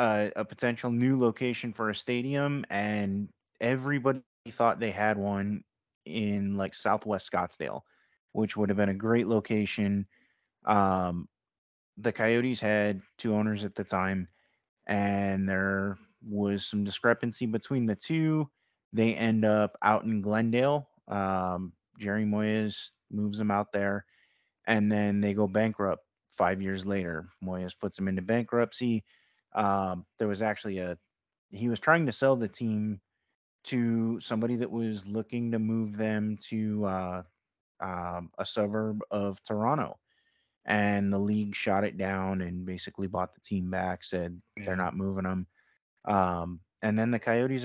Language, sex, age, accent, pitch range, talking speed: English, male, 20-39, American, 95-115 Hz, 145 wpm